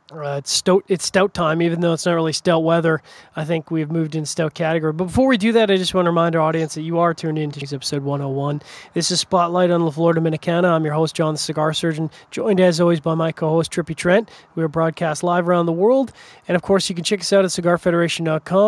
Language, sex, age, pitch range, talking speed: English, male, 20-39, 160-180 Hz, 250 wpm